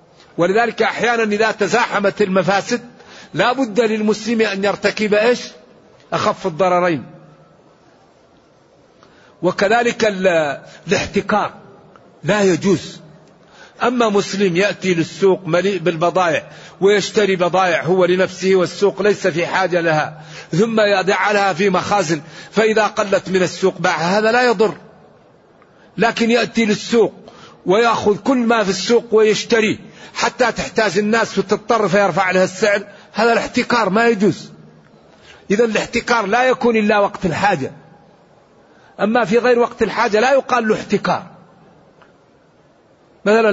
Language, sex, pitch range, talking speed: Arabic, male, 190-230 Hz, 110 wpm